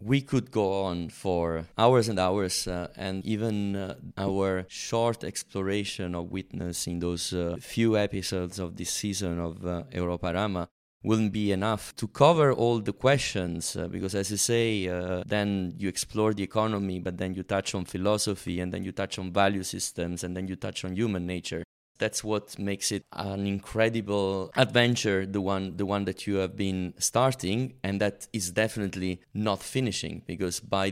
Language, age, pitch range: English, 20-39, 90-105 Hz